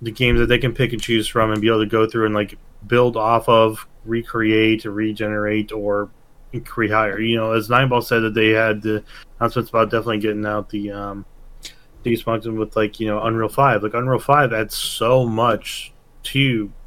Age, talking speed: 20-39, 195 wpm